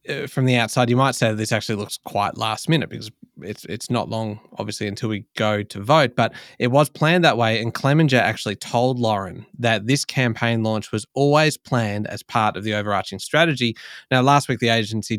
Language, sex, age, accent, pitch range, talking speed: English, male, 20-39, Australian, 105-130 Hz, 210 wpm